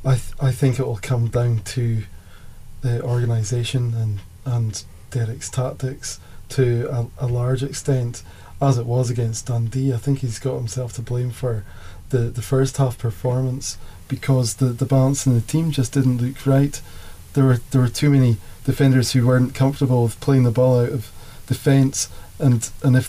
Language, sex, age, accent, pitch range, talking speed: English, male, 20-39, British, 115-130 Hz, 180 wpm